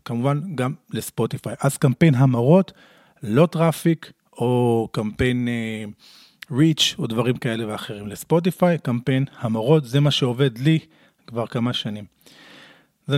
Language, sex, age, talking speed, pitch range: Hebrew, male, 40-59, 125 wpm, 125-165 Hz